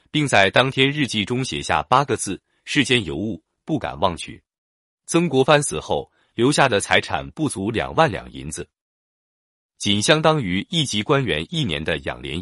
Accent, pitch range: native, 90-145 Hz